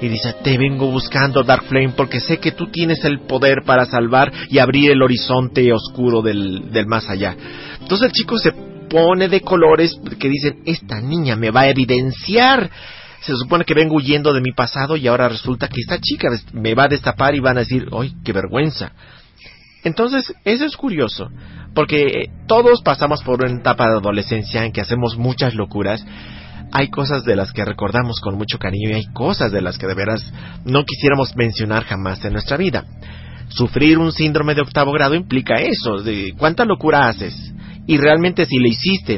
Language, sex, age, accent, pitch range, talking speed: Spanish, male, 40-59, Mexican, 110-145 Hz, 190 wpm